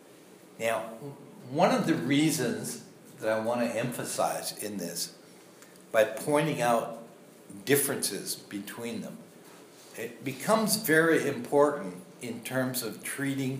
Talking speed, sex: 115 wpm, male